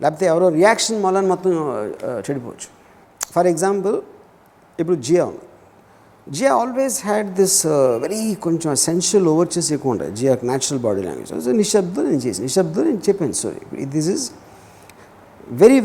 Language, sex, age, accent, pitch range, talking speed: Telugu, male, 50-69, native, 140-195 Hz, 135 wpm